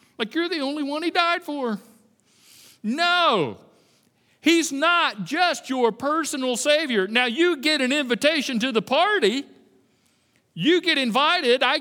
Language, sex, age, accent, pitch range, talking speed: English, male, 50-69, American, 160-245 Hz, 135 wpm